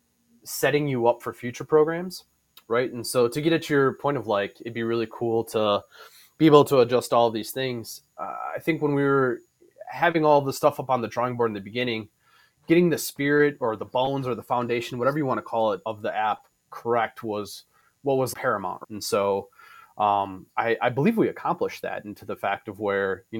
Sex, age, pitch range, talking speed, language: male, 20-39, 110-135 Hz, 220 wpm, English